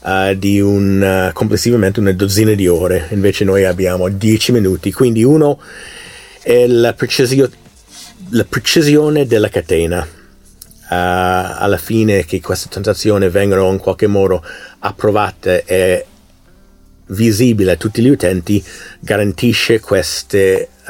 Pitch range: 95-120 Hz